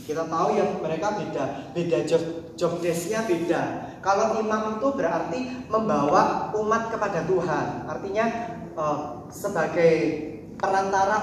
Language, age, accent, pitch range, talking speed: Indonesian, 20-39, native, 195-285 Hz, 110 wpm